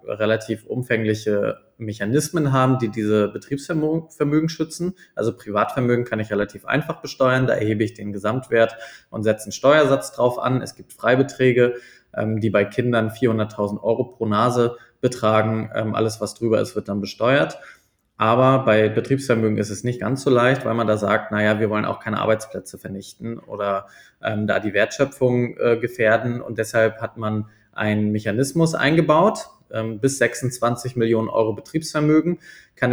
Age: 20-39